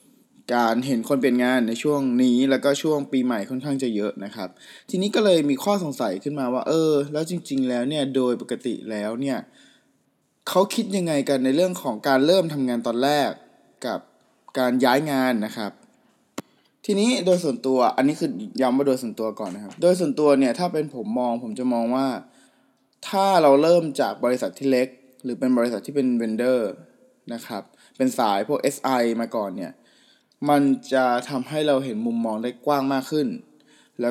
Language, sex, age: Thai, male, 20-39